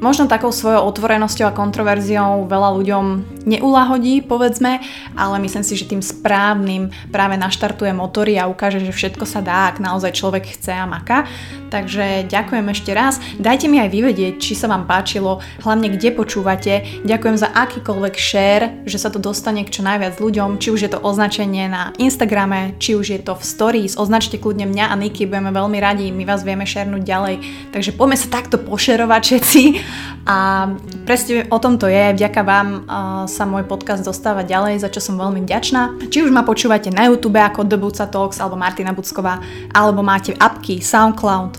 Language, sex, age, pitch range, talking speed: Slovak, female, 20-39, 190-220 Hz, 180 wpm